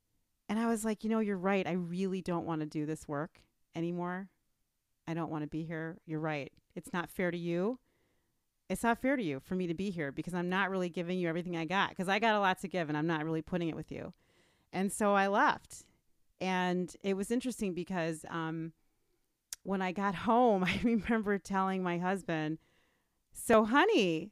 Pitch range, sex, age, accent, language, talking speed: 165-215 Hz, female, 40-59, American, English, 210 wpm